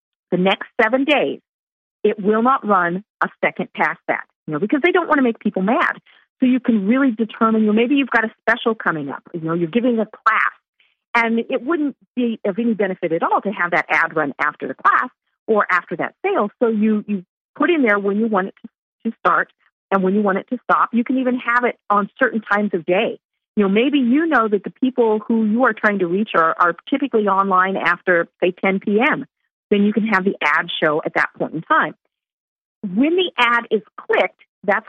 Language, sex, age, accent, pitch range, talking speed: English, female, 50-69, American, 190-245 Hz, 225 wpm